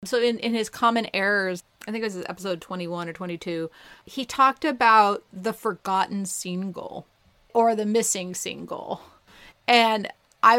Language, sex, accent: English, female, American